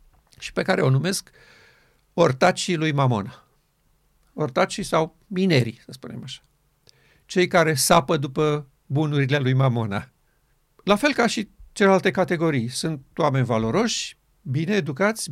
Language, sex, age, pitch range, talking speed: Romanian, male, 50-69, 135-190 Hz, 125 wpm